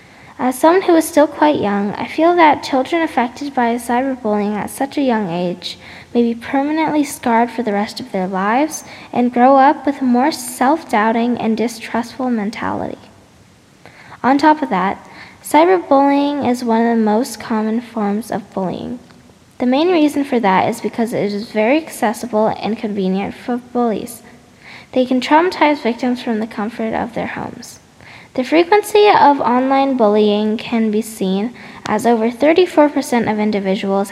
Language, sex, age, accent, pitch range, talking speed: English, female, 10-29, American, 215-275 Hz, 160 wpm